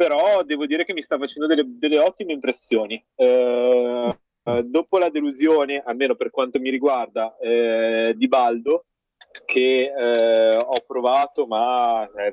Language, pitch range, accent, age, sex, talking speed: Italian, 120-150 Hz, native, 30-49, male, 140 wpm